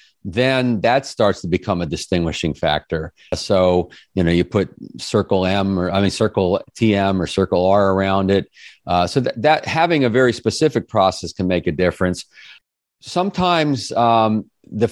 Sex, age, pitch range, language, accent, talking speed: male, 50-69, 95-120 Hz, English, American, 165 wpm